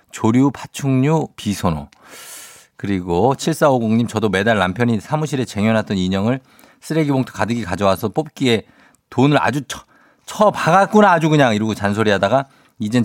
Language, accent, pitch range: Korean, native, 105-150 Hz